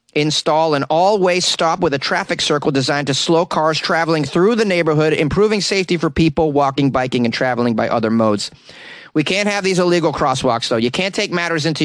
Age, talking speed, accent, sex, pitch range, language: 30-49, 200 wpm, American, male, 115-165 Hz, English